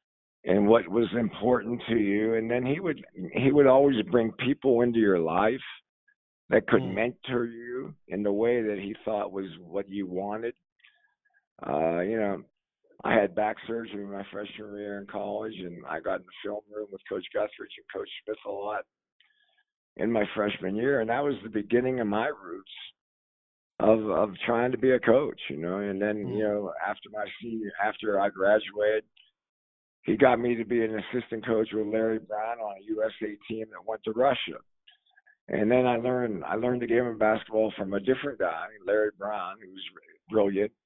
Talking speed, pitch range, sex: 185 wpm, 105-125 Hz, male